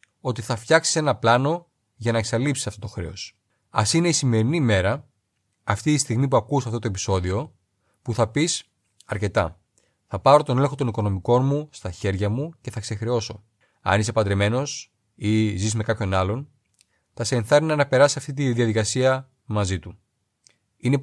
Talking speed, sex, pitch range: 170 wpm, male, 105-135 Hz